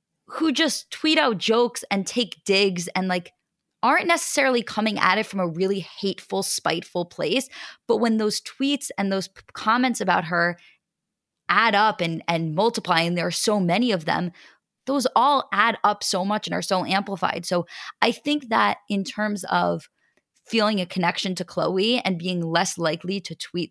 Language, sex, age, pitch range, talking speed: English, female, 20-39, 175-220 Hz, 175 wpm